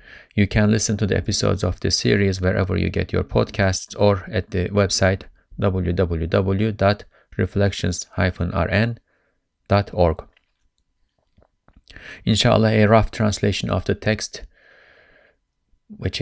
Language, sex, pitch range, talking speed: English, male, 90-105 Hz, 100 wpm